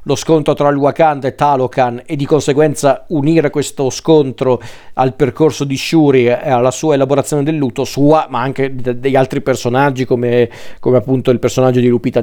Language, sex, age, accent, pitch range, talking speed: Italian, male, 40-59, native, 125-145 Hz, 180 wpm